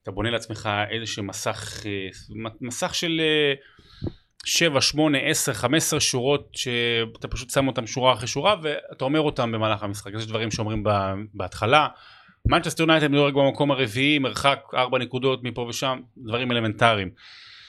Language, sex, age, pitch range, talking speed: Hebrew, male, 30-49, 110-135 Hz, 135 wpm